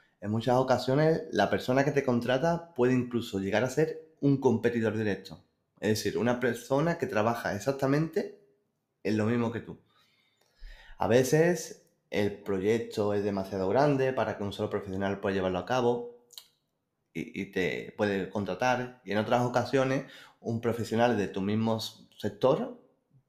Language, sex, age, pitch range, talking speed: Spanish, male, 20-39, 100-130 Hz, 150 wpm